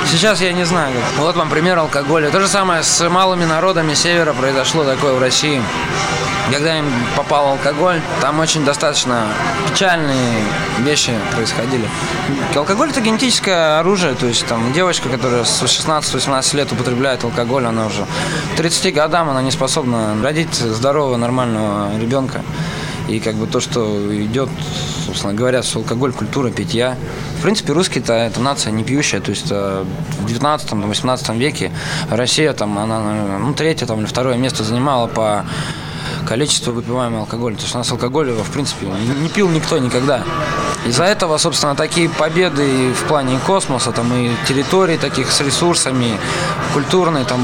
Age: 20-39